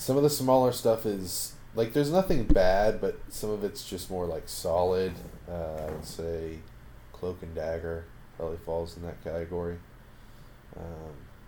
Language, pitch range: English, 85-115 Hz